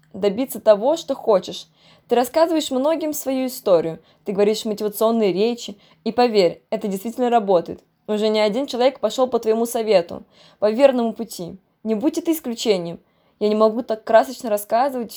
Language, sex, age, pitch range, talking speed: Russian, female, 20-39, 205-260 Hz, 155 wpm